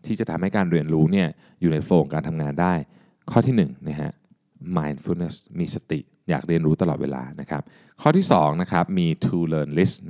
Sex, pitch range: male, 75-110 Hz